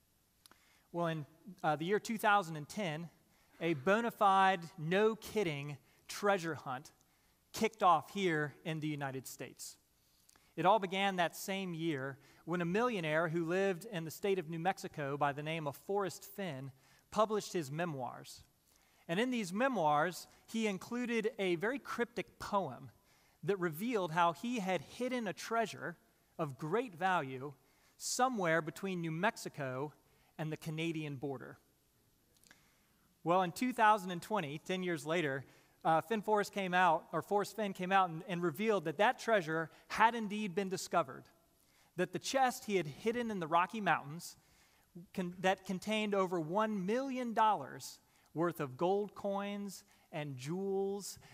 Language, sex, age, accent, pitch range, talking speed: English, male, 30-49, American, 160-205 Hz, 145 wpm